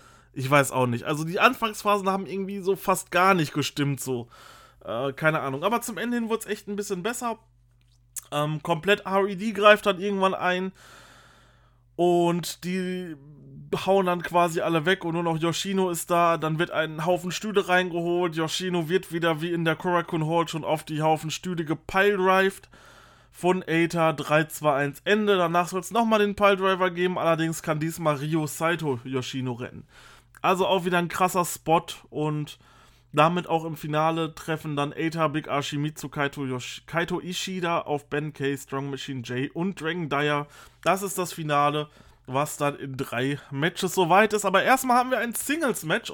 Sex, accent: male, German